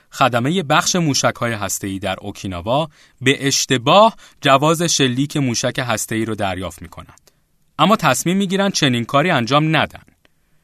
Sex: male